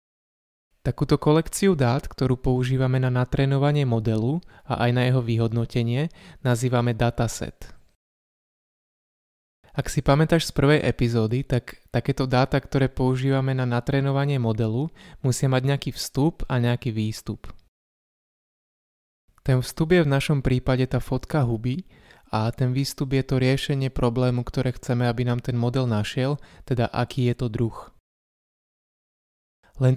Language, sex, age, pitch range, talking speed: Slovak, male, 20-39, 120-135 Hz, 130 wpm